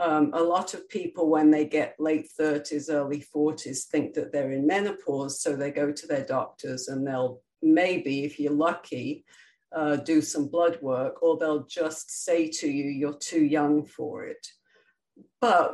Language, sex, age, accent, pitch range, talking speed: English, female, 50-69, British, 145-170 Hz, 175 wpm